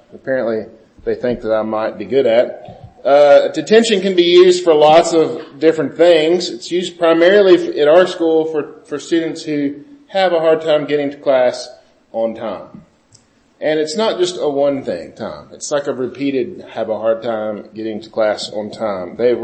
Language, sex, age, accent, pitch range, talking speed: English, male, 40-59, American, 125-165 Hz, 190 wpm